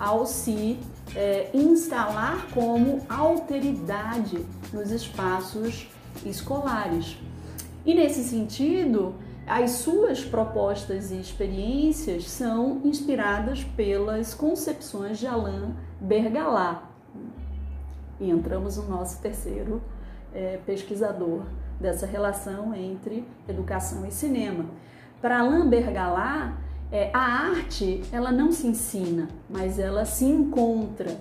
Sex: female